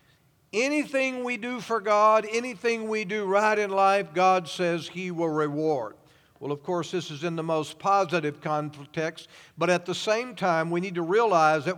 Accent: American